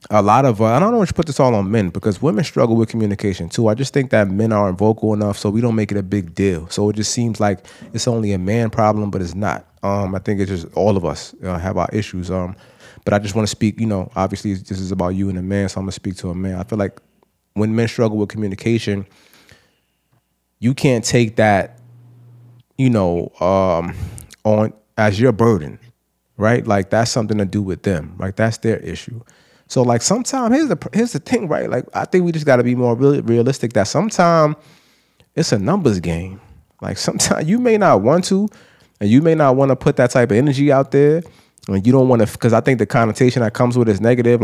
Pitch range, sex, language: 100-135 Hz, male, English